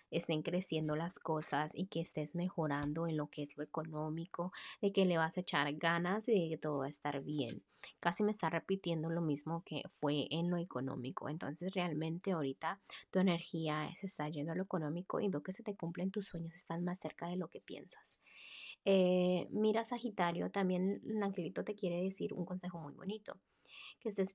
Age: 20-39